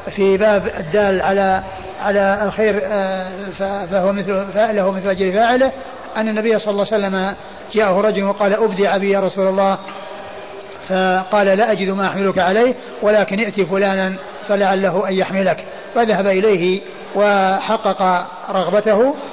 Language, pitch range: Arabic, 195-215 Hz